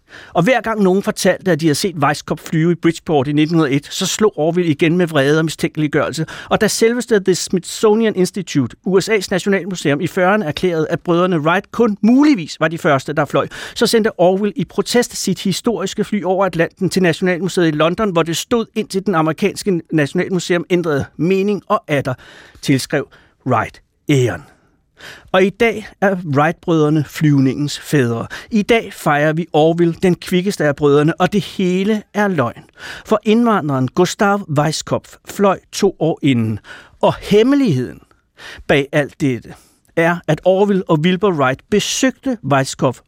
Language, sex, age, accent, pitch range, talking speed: Danish, male, 60-79, native, 145-200 Hz, 160 wpm